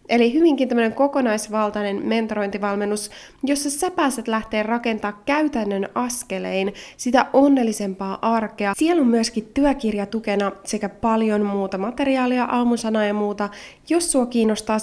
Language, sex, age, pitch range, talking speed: Finnish, female, 20-39, 200-245 Hz, 115 wpm